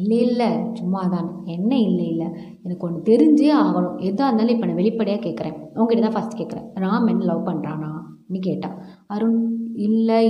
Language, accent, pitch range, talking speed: Tamil, native, 185-225 Hz, 165 wpm